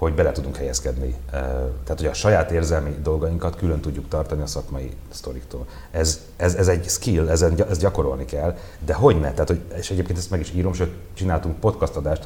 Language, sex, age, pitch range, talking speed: Hungarian, male, 30-49, 70-85 Hz, 180 wpm